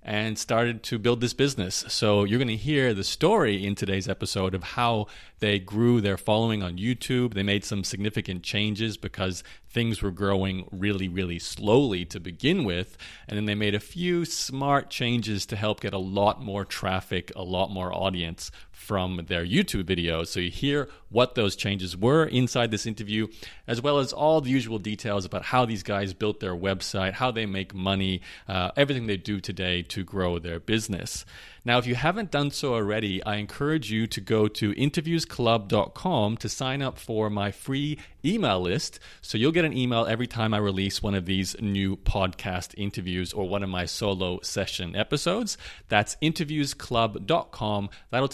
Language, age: English, 40-59